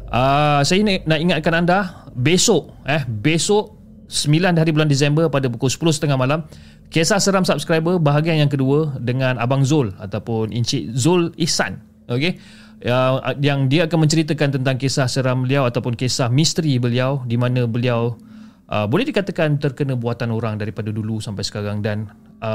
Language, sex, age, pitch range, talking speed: Malay, male, 30-49, 110-155 Hz, 150 wpm